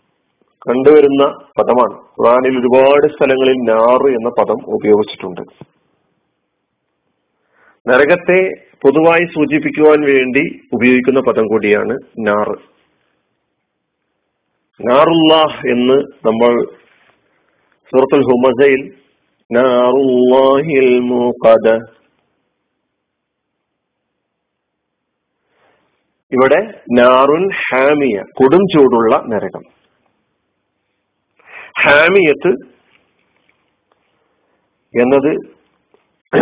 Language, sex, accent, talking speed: Malayalam, male, native, 45 wpm